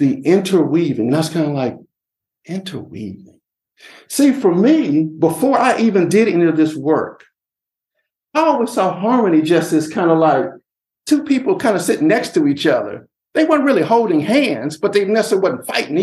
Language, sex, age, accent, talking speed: English, male, 50-69, American, 170 wpm